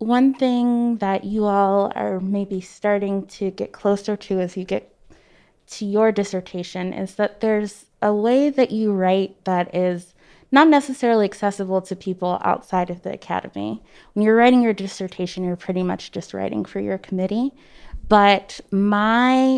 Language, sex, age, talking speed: English, female, 20-39, 160 wpm